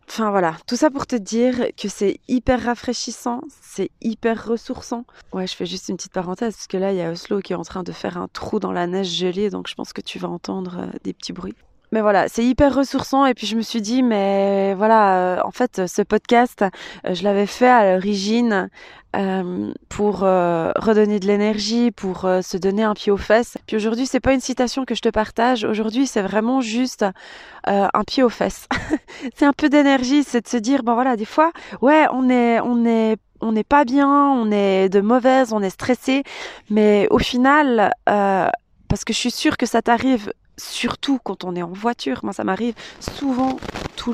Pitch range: 200-255 Hz